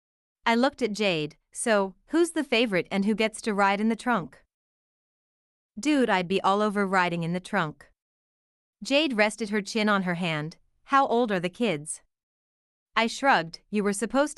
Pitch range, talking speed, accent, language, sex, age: 175-230 Hz, 175 wpm, American, English, female, 30-49